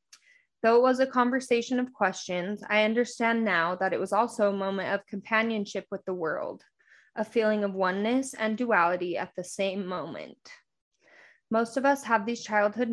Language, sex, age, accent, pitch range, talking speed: English, female, 20-39, American, 190-230 Hz, 170 wpm